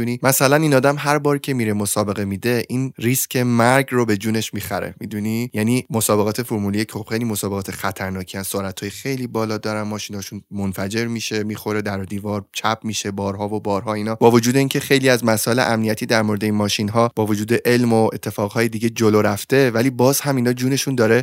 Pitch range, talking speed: 105-130 Hz, 185 wpm